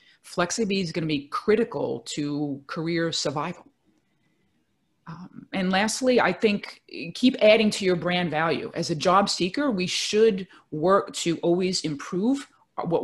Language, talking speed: English, 145 wpm